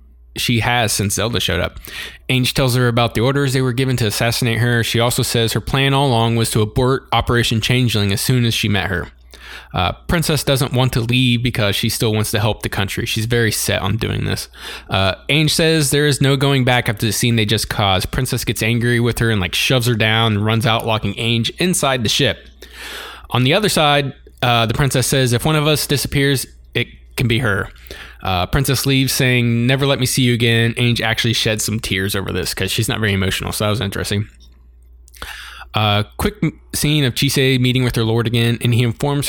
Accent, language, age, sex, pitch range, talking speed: American, English, 20-39, male, 105-130 Hz, 220 wpm